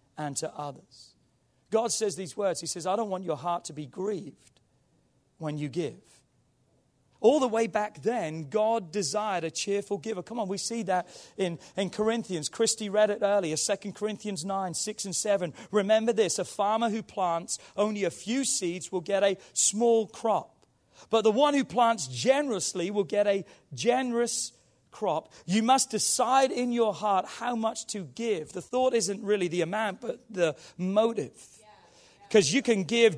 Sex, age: male, 40-59